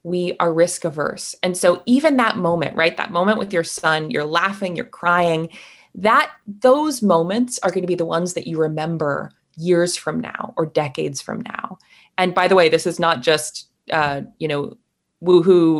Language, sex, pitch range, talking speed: English, female, 160-225 Hz, 190 wpm